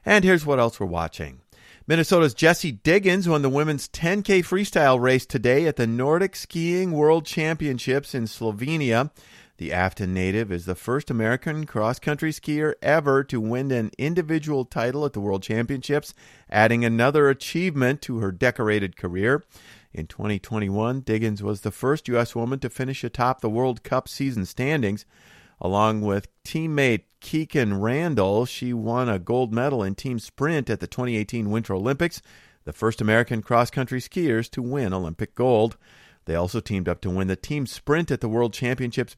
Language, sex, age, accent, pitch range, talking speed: English, male, 40-59, American, 110-145 Hz, 165 wpm